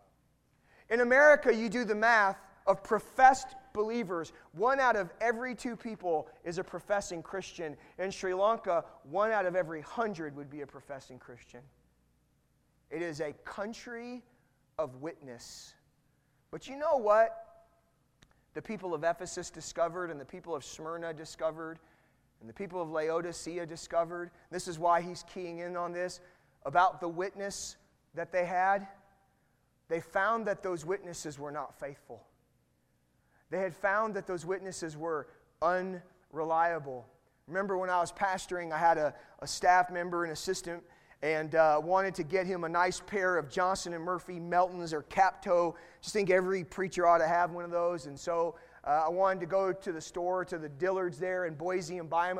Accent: American